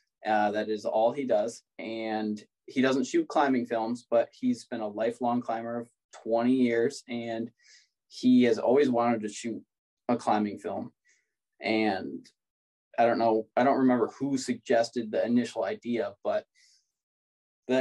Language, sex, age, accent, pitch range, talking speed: English, male, 20-39, American, 115-130 Hz, 150 wpm